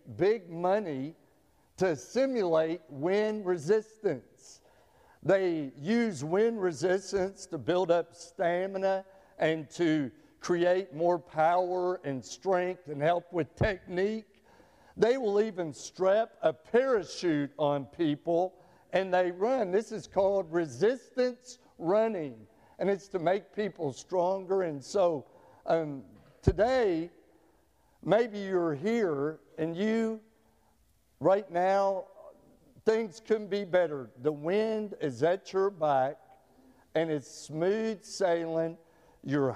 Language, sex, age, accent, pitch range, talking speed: English, male, 60-79, American, 160-195 Hz, 110 wpm